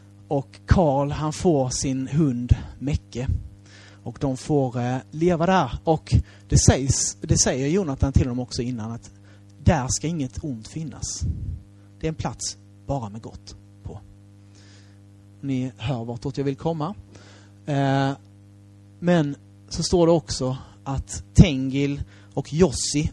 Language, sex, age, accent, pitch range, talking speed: Swedish, male, 30-49, native, 100-140 Hz, 140 wpm